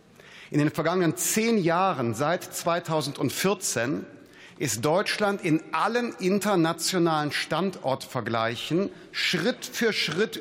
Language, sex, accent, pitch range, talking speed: German, male, German, 130-170 Hz, 90 wpm